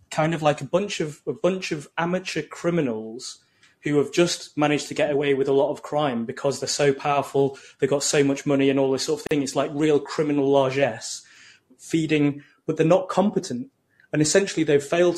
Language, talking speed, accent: English, 205 wpm, British